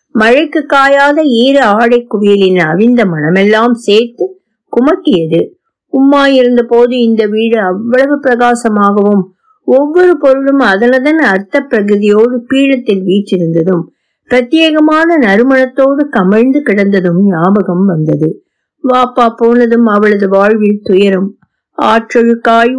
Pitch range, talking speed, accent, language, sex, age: 200-260 Hz, 90 wpm, native, Tamil, female, 50-69